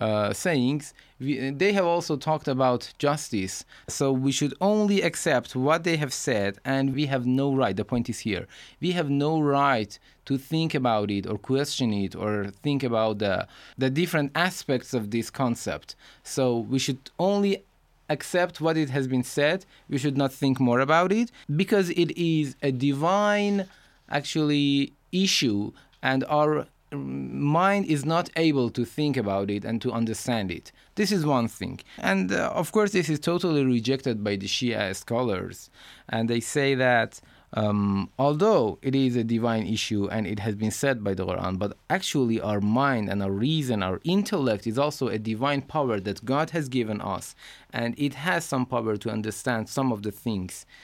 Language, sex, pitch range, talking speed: Persian, male, 110-155 Hz, 180 wpm